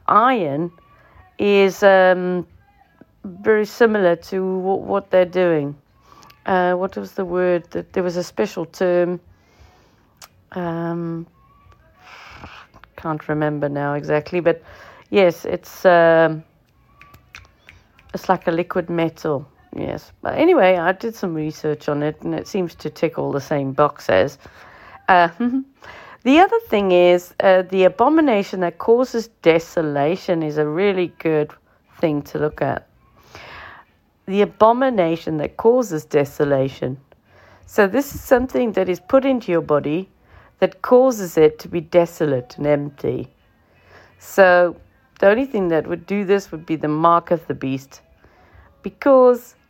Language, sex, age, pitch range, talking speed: English, female, 40-59, 150-195 Hz, 135 wpm